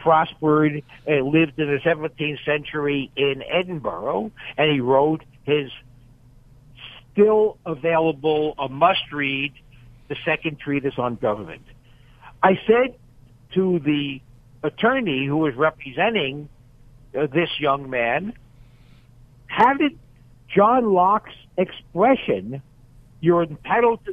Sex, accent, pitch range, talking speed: male, American, 130-185 Hz, 100 wpm